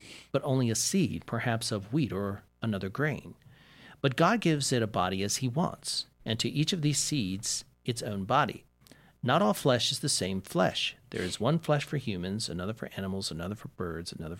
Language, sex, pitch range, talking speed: English, male, 105-145 Hz, 200 wpm